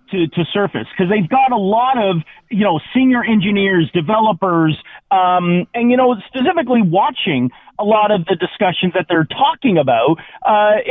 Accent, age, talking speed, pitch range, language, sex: American, 40-59, 165 wpm, 185-250 Hz, English, male